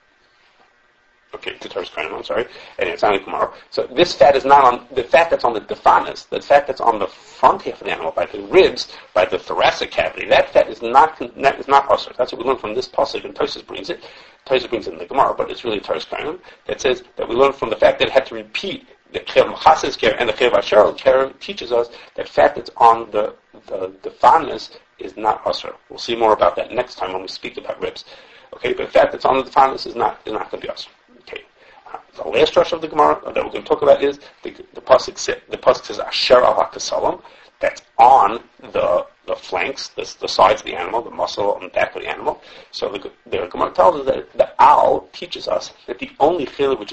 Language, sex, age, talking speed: English, male, 40-59, 230 wpm